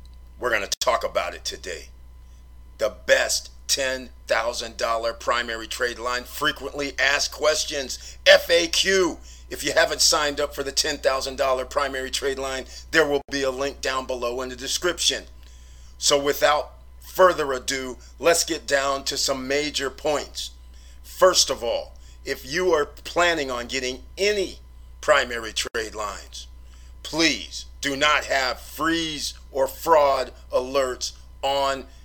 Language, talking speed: English, 135 wpm